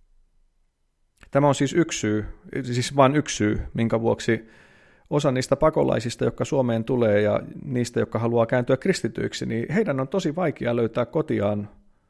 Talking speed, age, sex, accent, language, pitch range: 140 wpm, 30-49, male, native, Finnish, 115-150 Hz